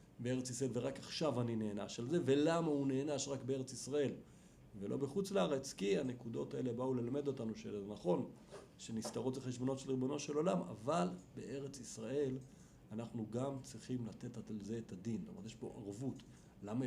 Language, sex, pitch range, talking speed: Hebrew, male, 115-150 Hz, 175 wpm